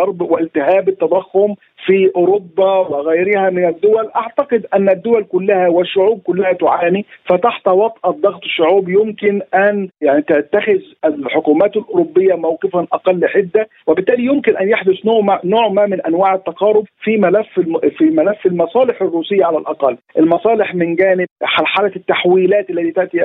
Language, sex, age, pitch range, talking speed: Arabic, male, 50-69, 175-210 Hz, 130 wpm